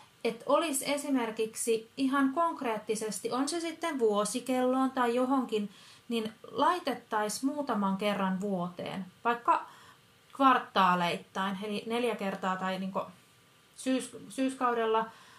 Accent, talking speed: native, 100 wpm